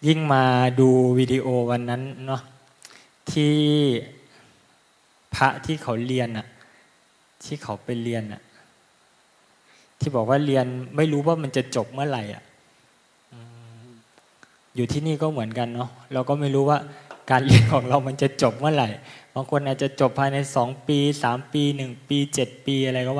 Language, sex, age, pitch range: Thai, male, 20-39, 125-145 Hz